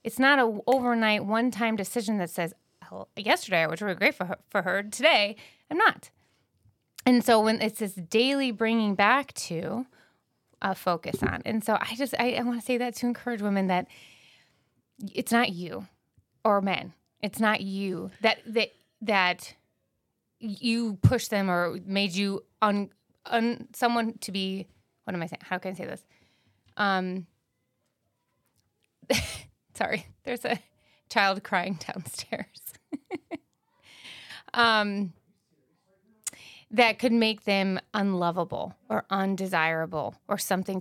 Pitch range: 190-230 Hz